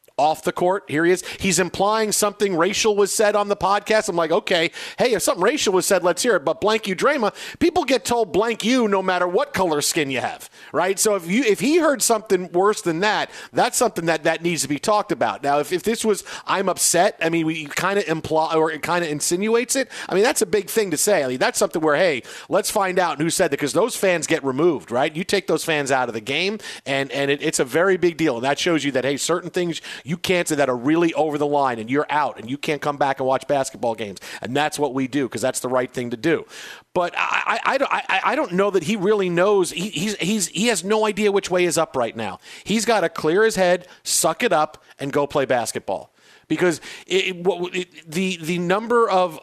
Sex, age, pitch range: male, 40-59, 150-205 Hz